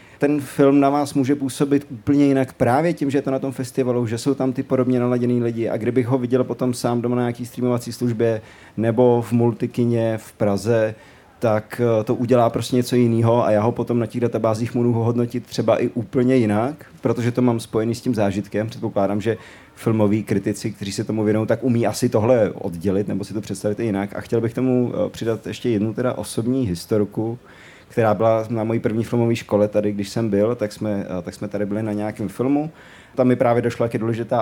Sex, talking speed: male, 210 wpm